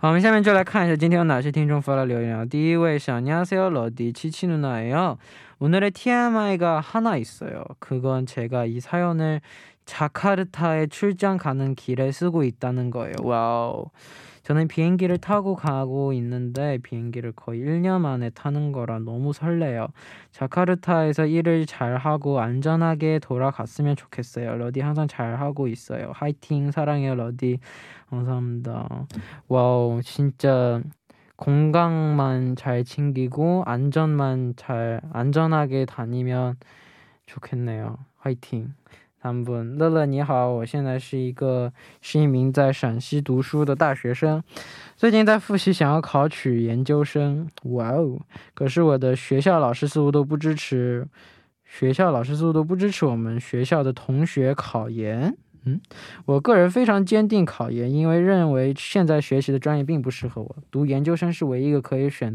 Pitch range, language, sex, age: 125-160 Hz, Korean, male, 20-39